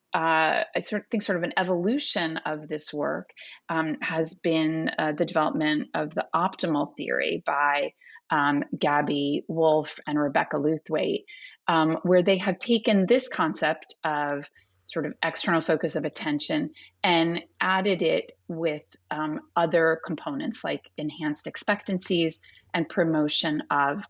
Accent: American